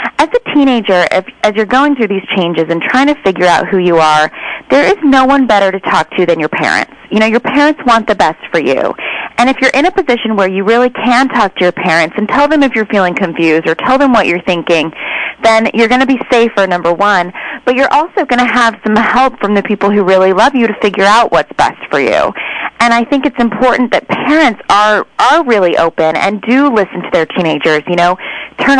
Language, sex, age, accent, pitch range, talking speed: English, female, 30-49, American, 190-255 Hz, 240 wpm